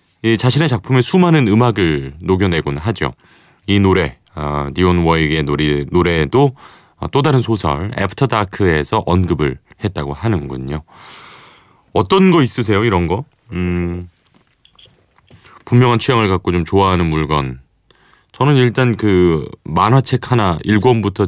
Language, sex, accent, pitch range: Korean, male, native, 80-110 Hz